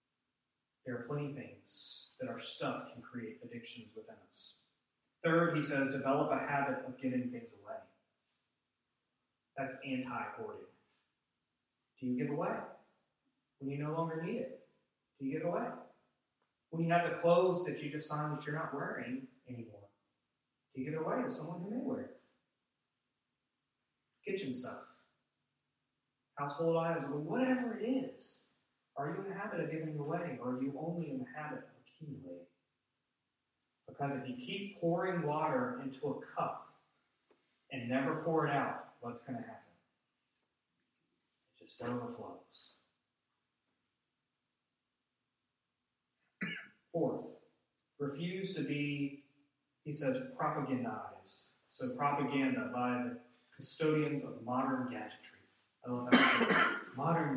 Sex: male